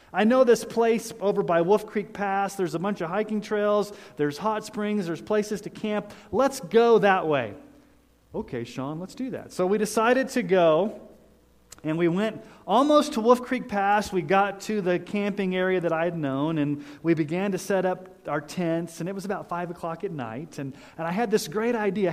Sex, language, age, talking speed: male, English, 40-59, 210 wpm